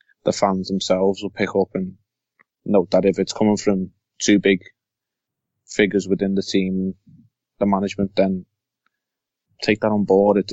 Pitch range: 100-110 Hz